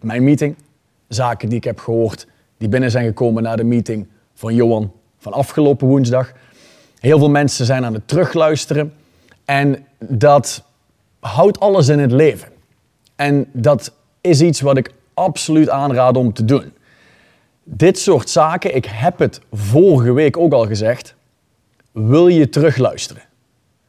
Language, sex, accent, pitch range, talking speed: Dutch, male, Dutch, 120-155 Hz, 145 wpm